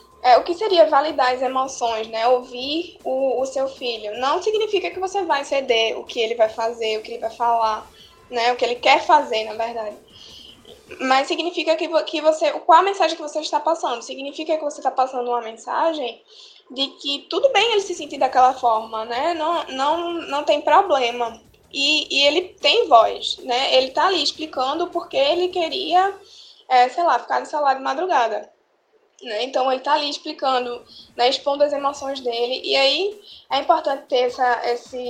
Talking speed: 185 wpm